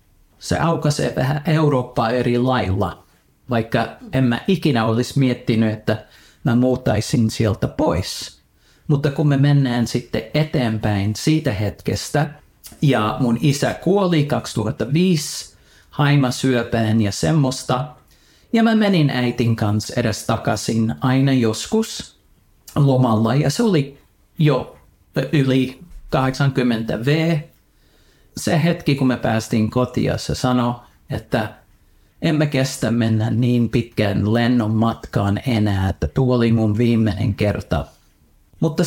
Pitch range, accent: 110-145 Hz, native